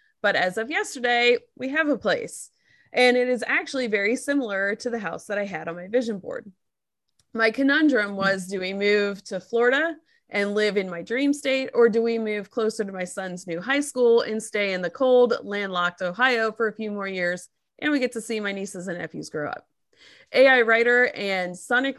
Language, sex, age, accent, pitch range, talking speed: English, female, 20-39, American, 200-255 Hz, 205 wpm